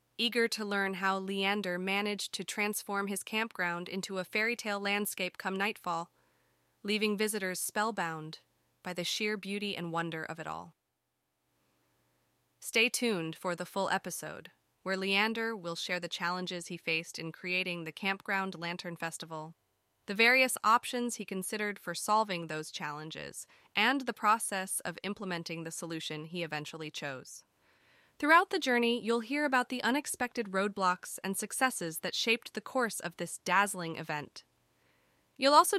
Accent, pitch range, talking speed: American, 170-215 Hz, 150 wpm